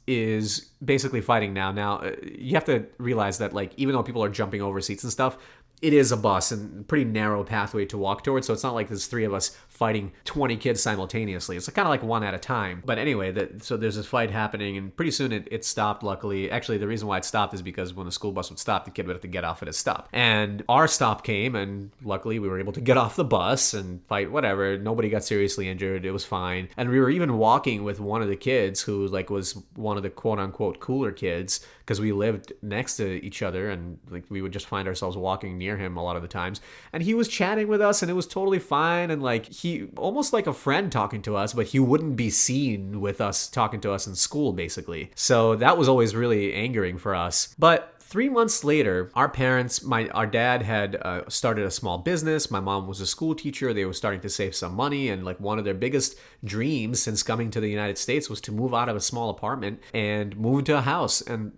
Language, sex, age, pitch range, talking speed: English, male, 30-49, 100-130 Hz, 245 wpm